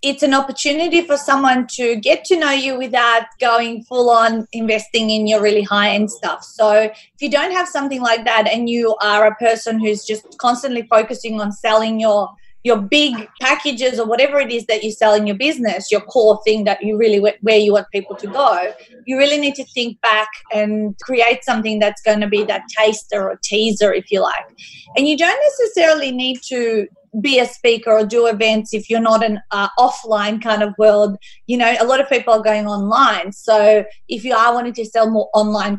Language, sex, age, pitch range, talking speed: English, female, 30-49, 215-255 Hz, 205 wpm